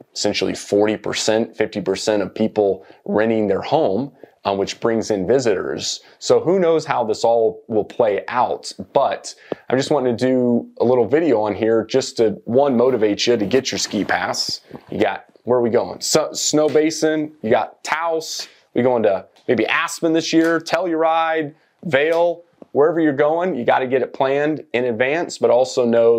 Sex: male